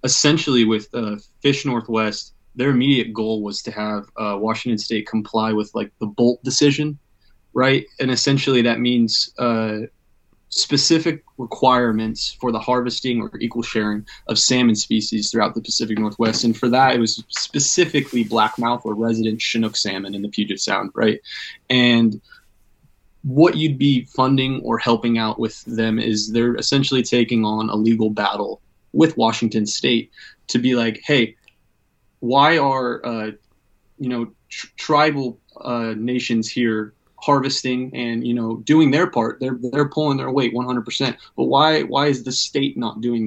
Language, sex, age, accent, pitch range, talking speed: English, male, 20-39, American, 110-130 Hz, 155 wpm